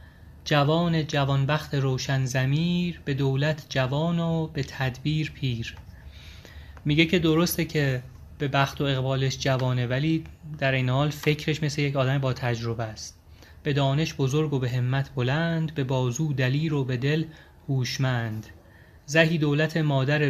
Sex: male